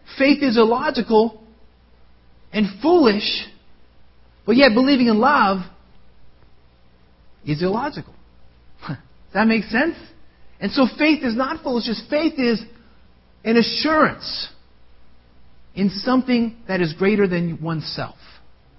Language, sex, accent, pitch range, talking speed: English, male, American, 160-255 Hz, 105 wpm